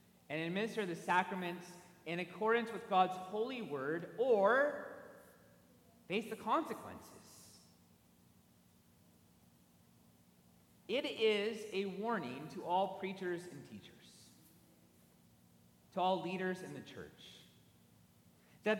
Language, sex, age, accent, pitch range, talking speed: English, male, 30-49, American, 135-225 Hz, 95 wpm